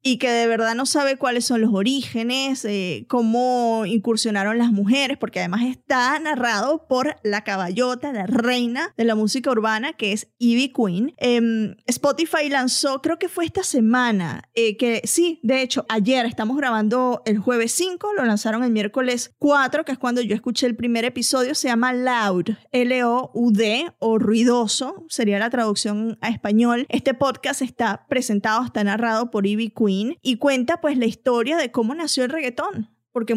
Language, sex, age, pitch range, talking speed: Spanish, female, 20-39, 220-265 Hz, 170 wpm